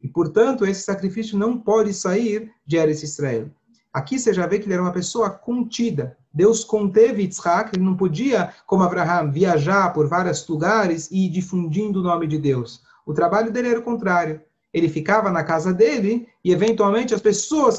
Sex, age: male, 40-59